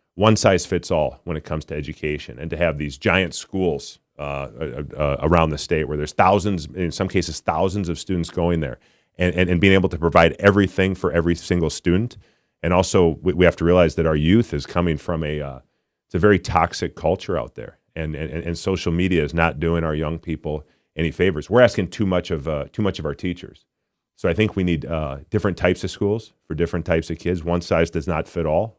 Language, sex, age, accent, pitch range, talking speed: English, male, 40-59, American, 75-90 Hz, 225 wpm